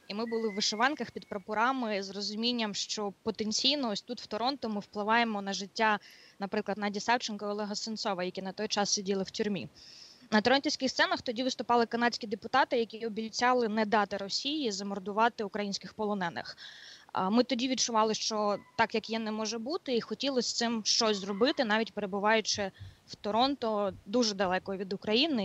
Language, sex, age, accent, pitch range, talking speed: Ukrainian, female, 20-39, native, 205-240 Hz, 165 wpm